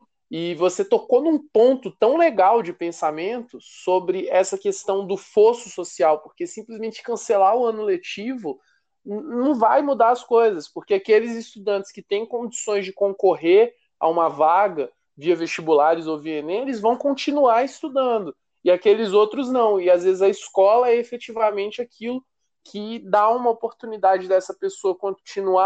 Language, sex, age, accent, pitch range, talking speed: Portuguese, male, 20-39, Brazilian, 180-235 Hz, 150 wpm